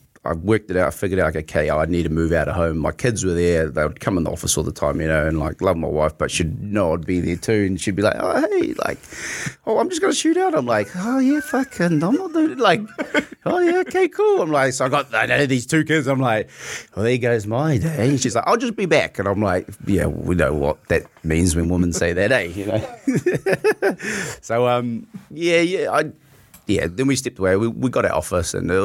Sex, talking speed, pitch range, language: male, 265 wpm, 85-125 Hz, English